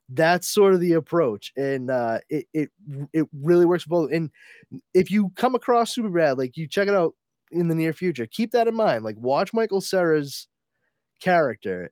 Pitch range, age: 120-170 Hz, 20-39